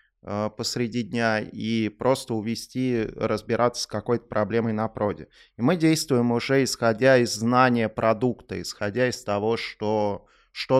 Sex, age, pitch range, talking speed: male, 20-39, 105-120 Hz, 135 wpm